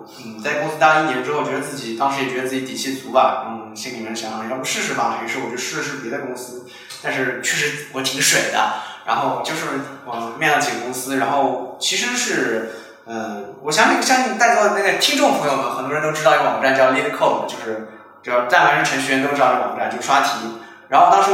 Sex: male